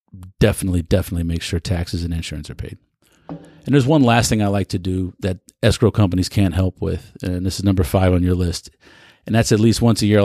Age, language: 40-59, English